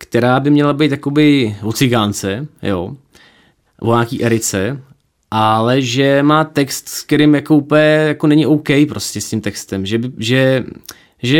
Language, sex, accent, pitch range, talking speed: Czech, male, native, 115-160 Hz, 145 wpm